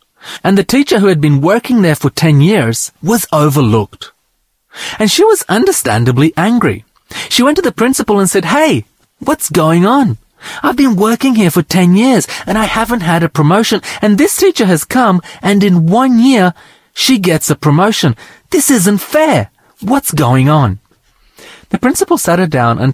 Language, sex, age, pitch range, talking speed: English, male, 30-49, 130-210 Hz, 175 wpm